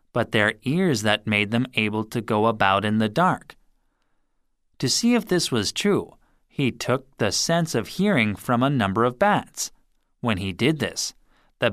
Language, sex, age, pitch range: Korean, male, 30-49, 105-165 Hz